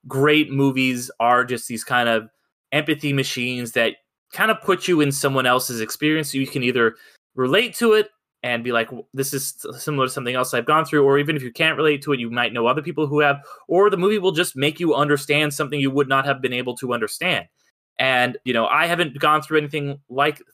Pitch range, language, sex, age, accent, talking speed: 125-155 Hz, English, male, 20-39, American, 230 wpm